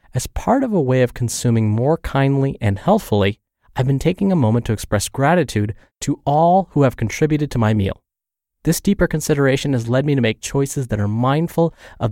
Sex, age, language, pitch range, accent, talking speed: male, 30-49, English, 110-150 Hz, American, 200 wpm